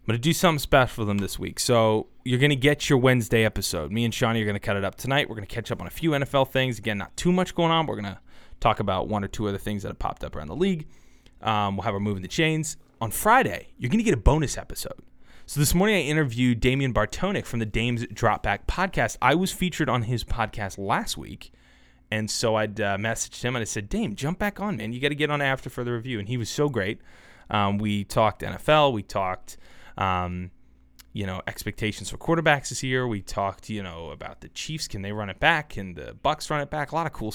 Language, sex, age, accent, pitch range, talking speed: English, male, 20-39, American, 100-135 Hz, 260 wpm